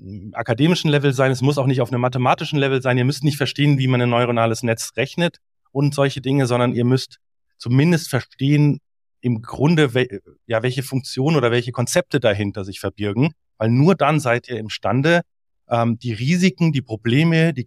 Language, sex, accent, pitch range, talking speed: German, male, German, 120-145 Hz, 185 wpm